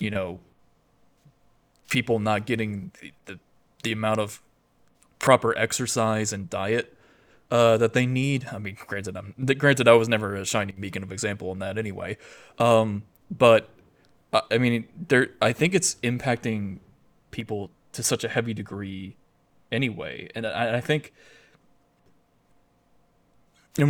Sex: male